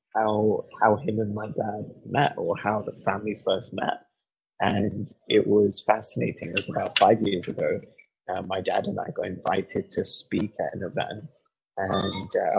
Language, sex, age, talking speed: English, male, 30-49, 175 wpm